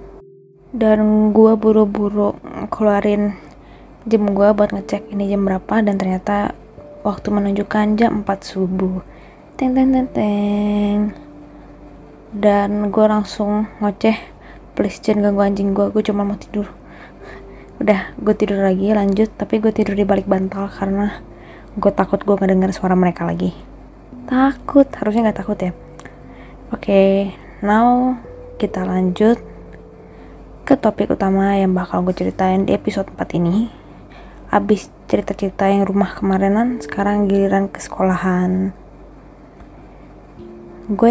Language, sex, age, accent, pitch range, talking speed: Indonesian, female, 20-39, native, 190-215 Hz, 125 wpm